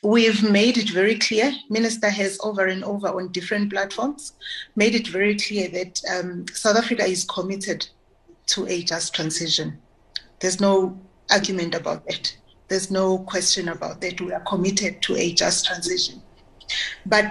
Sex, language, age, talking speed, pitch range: female, English, 30-49, 155 wpm, 185-215 Hz